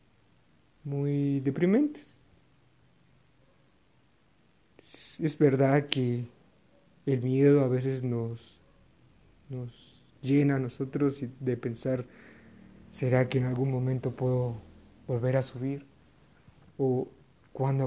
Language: Spanish